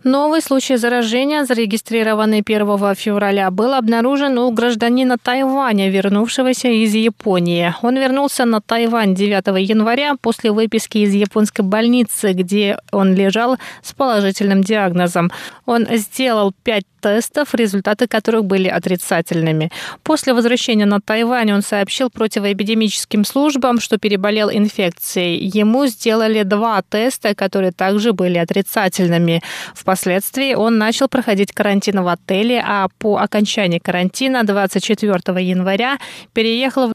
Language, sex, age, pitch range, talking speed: Russian, female, 20-39, 195-235 Hz, 115 wpm